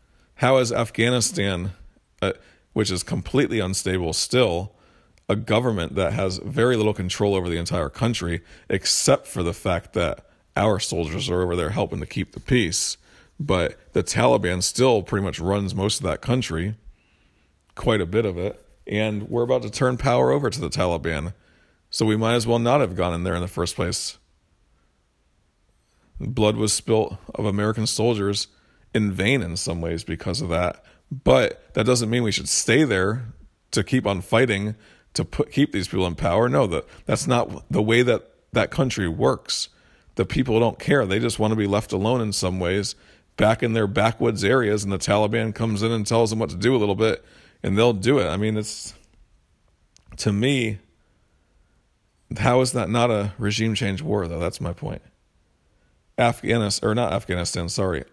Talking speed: 185 wpm